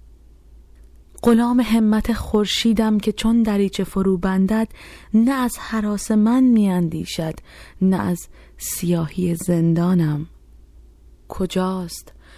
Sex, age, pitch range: female, 30-49, 155-190 Hz